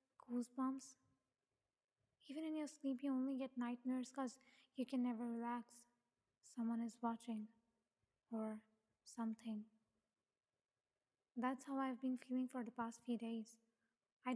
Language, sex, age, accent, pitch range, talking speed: English, female, 20-39, Indian, 240-270 Hz, 125 wpm